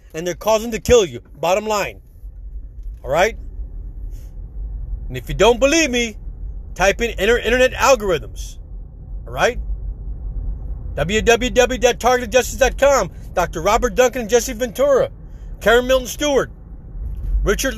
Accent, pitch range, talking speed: American, 195-280 Hz, 105 wpm